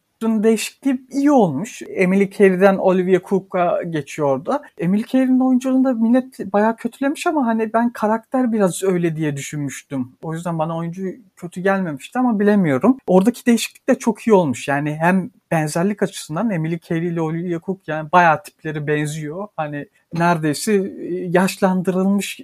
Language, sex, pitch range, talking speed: Turkish, male, 160-225 Hz, 140 wpm